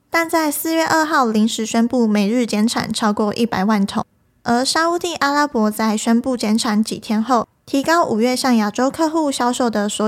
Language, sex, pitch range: Chinese, female, 220-270 Hz